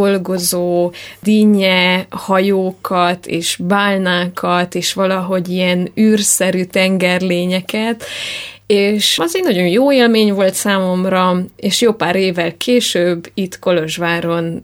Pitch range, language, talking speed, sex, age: 175-195 Hz, Hungarian, 100 wpm, female, 20-39